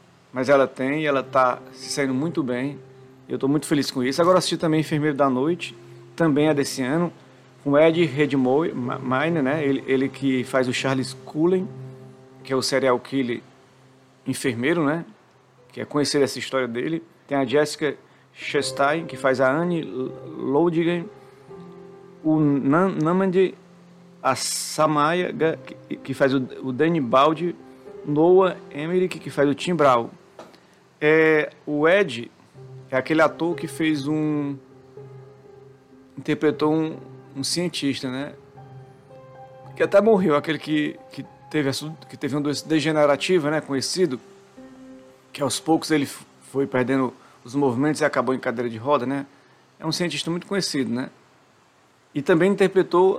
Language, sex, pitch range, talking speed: Portuguese, male, 130-160 Hz, 145 wpm